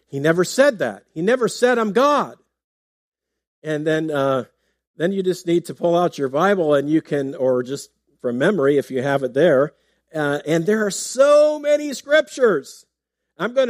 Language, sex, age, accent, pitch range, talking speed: English, male, 50-69, American, 150-210 Hz, 185 wpm